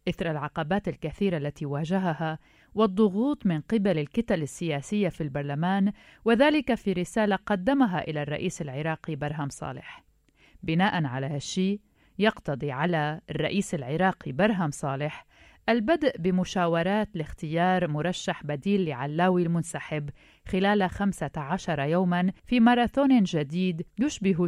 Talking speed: 110 wpm